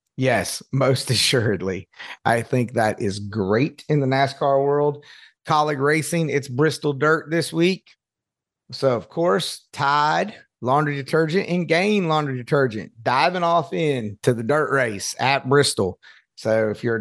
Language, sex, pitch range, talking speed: English, male, 130-150 Hz, 145 wpm